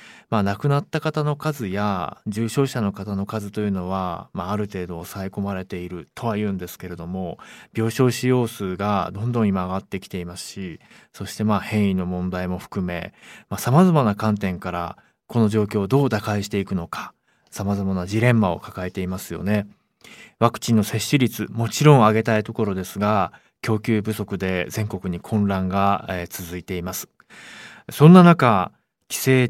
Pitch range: 95-125 Hz